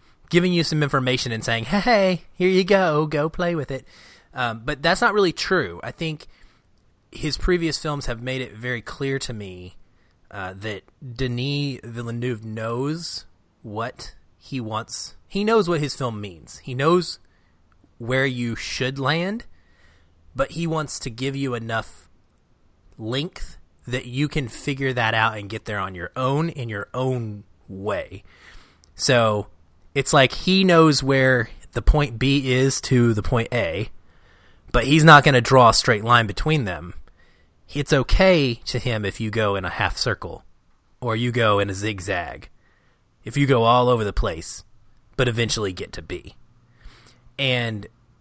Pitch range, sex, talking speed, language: 105-140 Hz, male, 165 wpm, English